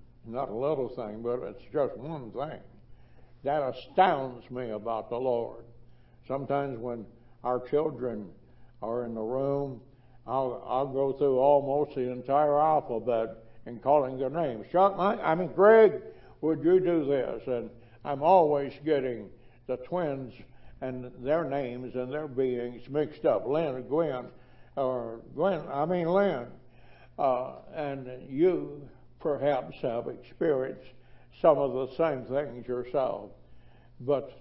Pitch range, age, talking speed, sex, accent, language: 125-155 Hz, 60-79, 135 wpm, male, American, English